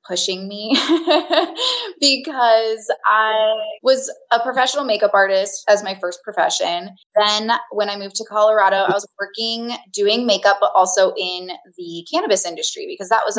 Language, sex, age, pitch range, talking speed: English, female, 20-39, 185-230 Hz, 150 wpm